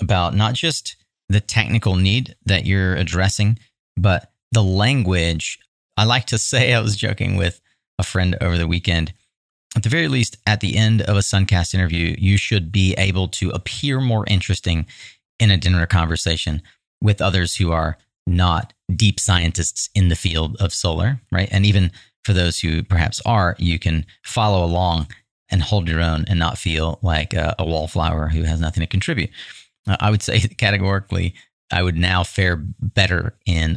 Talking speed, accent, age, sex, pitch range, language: 175 wpm, American, 30-49, male, 90-105 Hz, English